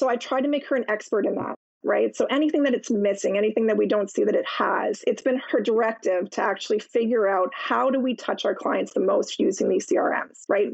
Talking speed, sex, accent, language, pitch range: 245 wpm, female, American, English, 220-270 Hz